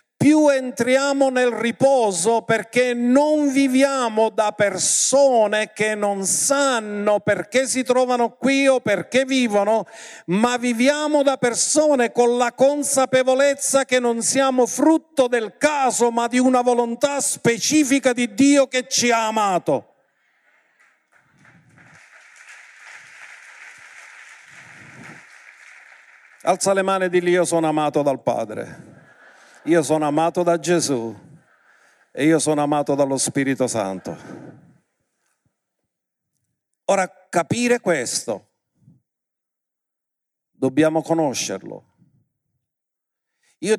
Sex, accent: male, native